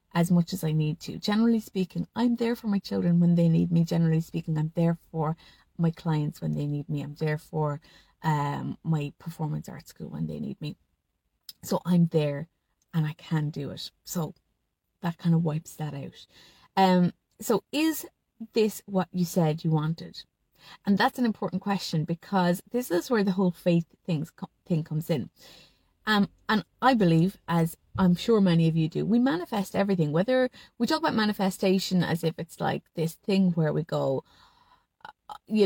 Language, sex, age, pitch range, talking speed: English, female, 30-49, 160-195 Hz, 180 wpm